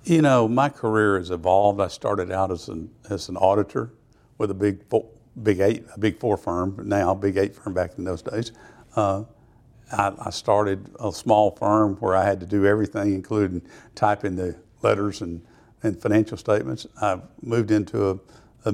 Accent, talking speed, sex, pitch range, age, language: American, 190 wpm, male, 100-115 Hz, 60-79, English